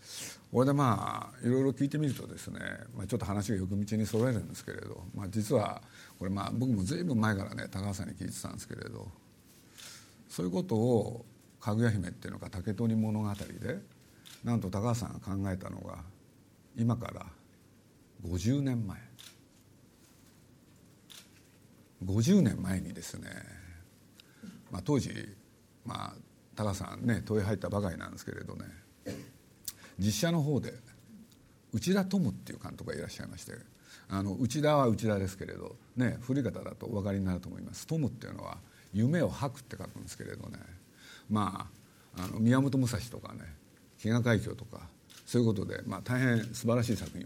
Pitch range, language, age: 95-120 Hz, Japanese, 50-69